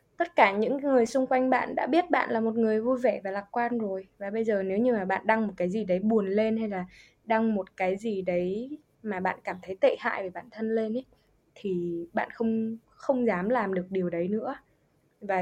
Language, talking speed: Vietnamese, 240 wpm